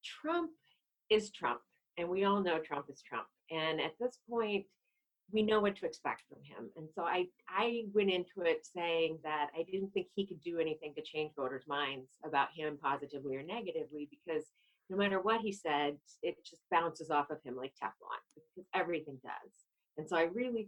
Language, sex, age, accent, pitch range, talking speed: English, female, 40-59, American, 145-200 Hz, 195 wpm